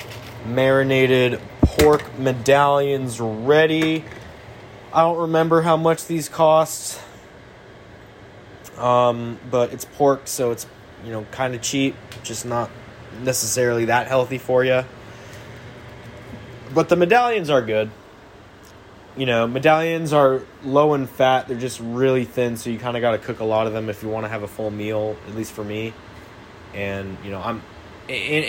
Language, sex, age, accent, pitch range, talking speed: English, male, 20-39, American, 110-135 Hz, 155 wpm